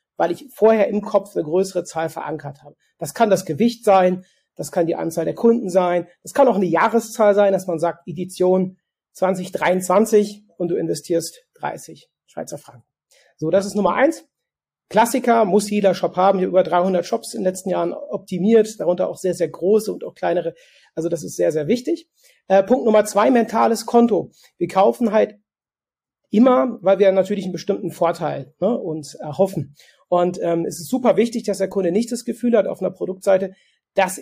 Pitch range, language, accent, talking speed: 175-220 Hz, German, German, 190 wpm